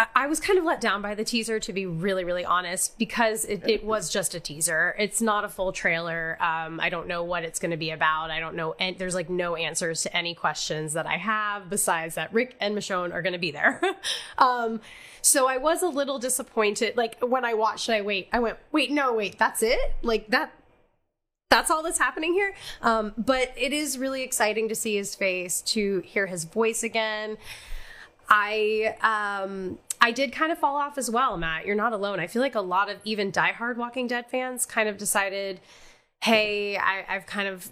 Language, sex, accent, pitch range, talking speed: English, female, American, 180-240 Hz, 215 wpm